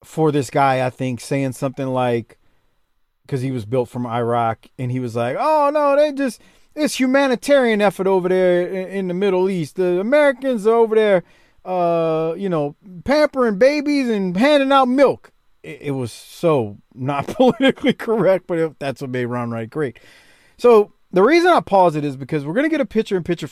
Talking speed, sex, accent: 195 wpm, male, American